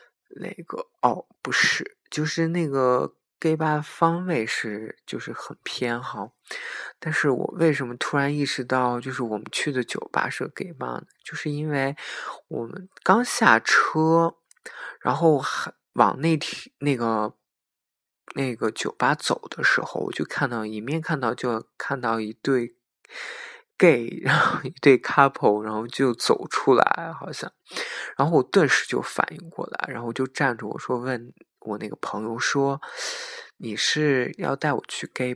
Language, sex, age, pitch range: Chinese, male, 20-39, 120-170 Hz